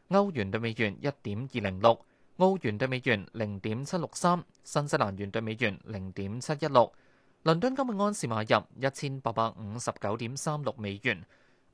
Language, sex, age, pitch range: Chinese, male, 20-39, 110-170 Hz